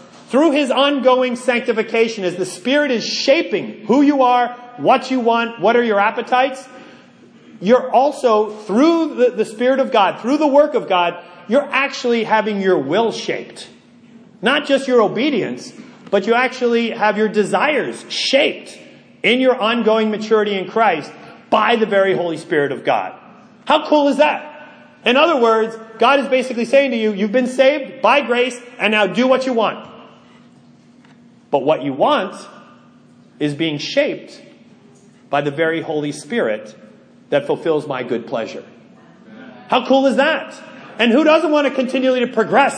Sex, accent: male, American